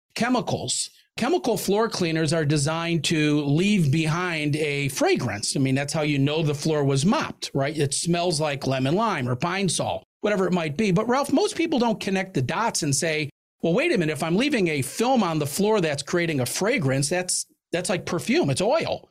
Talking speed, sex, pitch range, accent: 205 wpm, male, 150-200 Hz, American